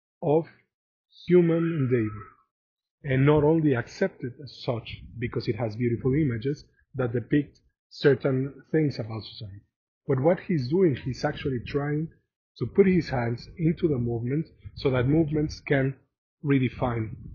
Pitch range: 125-160 Hz